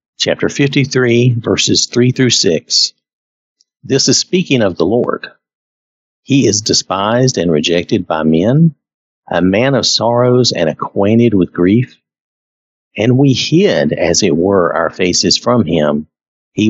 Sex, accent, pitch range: male, American, 85-125 Hz